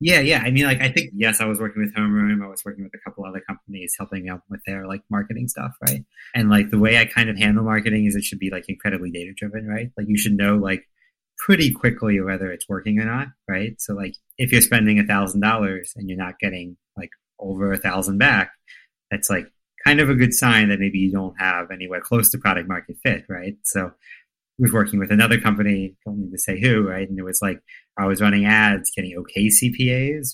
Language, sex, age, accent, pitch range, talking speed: English, male, 30-49, American, 95-115 Hz, 225 wpm